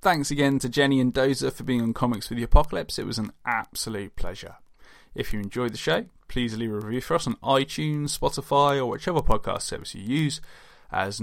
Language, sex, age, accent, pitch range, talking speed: English, male, 10-29, British, 110-145 Hz, 210 wpm